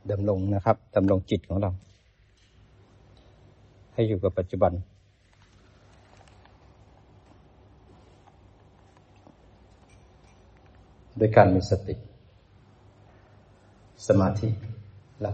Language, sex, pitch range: Thai, male, 95-110 Hz